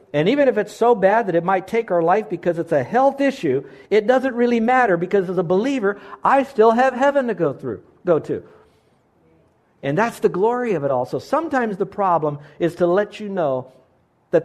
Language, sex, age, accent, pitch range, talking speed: English, male, 50-69, American, 145-200 Hz, 210 wpm